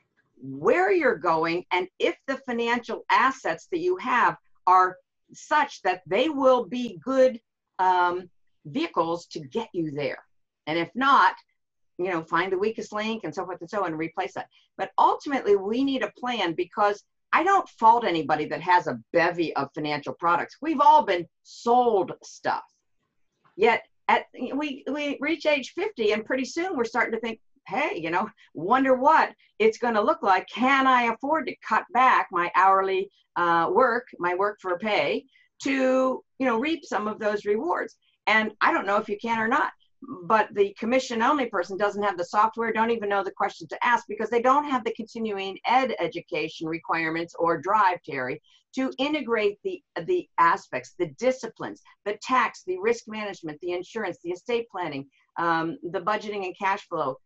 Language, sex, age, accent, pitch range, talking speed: English, female, 50-69, American, 180-260 Hz, 180 wpm